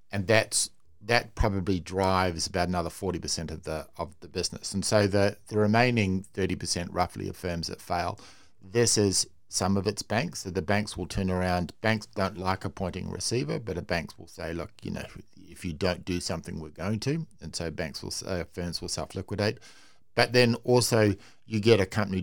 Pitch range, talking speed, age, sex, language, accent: 90-105 Hz, 200 wpm, 50-69, male, English, Australian